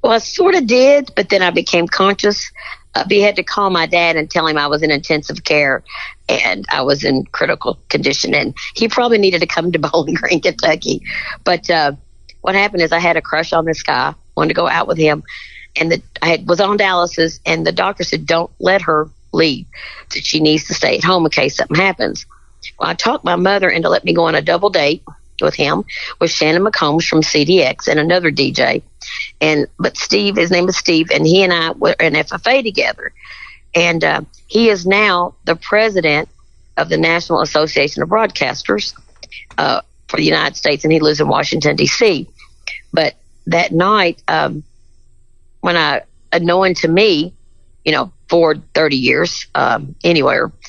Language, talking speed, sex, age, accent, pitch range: English, 190 wpm, female, 50-69, American, 160-195 Hz